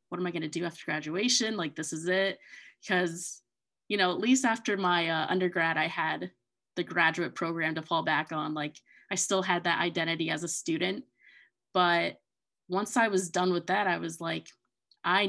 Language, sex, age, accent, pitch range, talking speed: English, female, 20-39, American, 165-185 Hz, 190 wpm